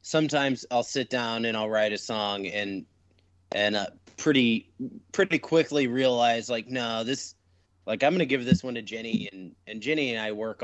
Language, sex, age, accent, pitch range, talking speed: English, male, 30-49, American, 95-125 Hz, 185 wpm